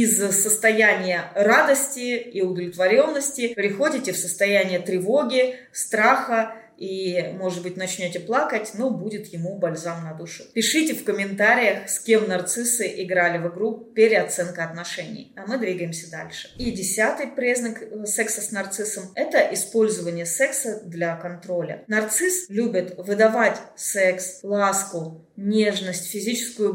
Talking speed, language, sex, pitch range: 120 wpm, Russian, female, 195-245 Hz